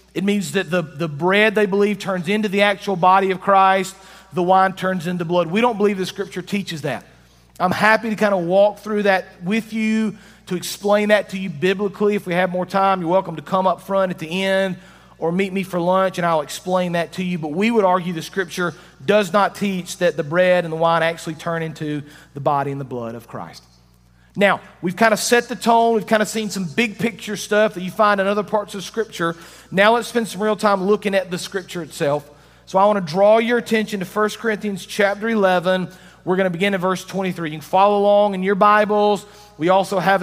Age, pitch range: 40-59, 175-205 Hz